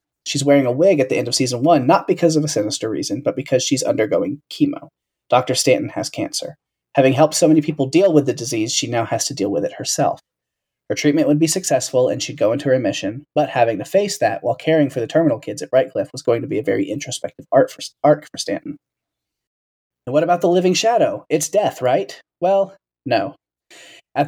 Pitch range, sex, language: 130-155 Hz, male, English